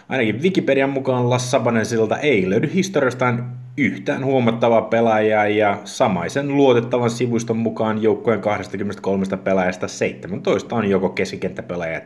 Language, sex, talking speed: Finnish, male, 115 wpm